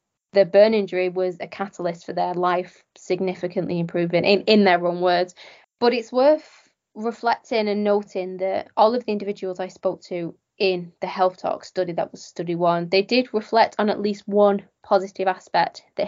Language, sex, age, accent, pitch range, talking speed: English, female, 10-29, British, 185-215 Hz, 185 wpm